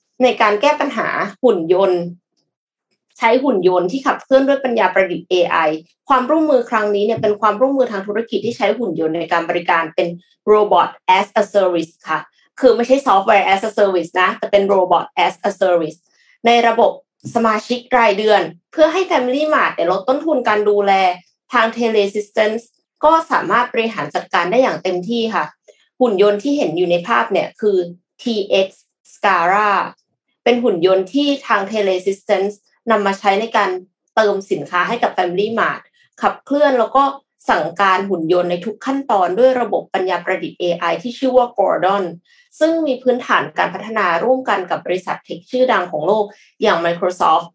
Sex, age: female, 20-39